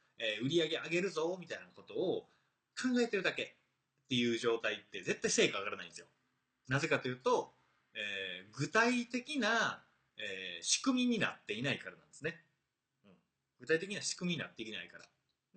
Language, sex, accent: Japanese, male, native